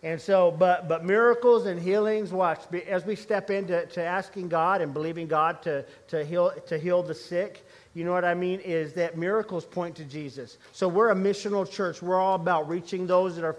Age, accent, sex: 50-69, American, male